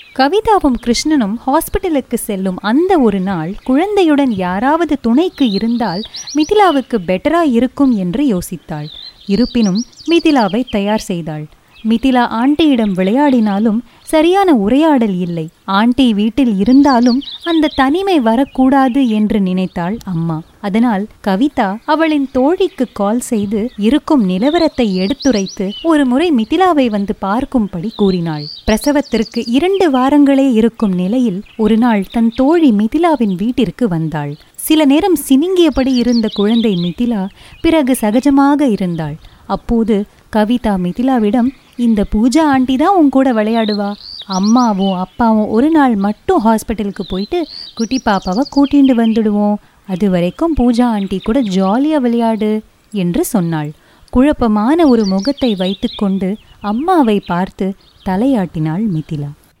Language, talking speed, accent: Tamil, 110 wpm, native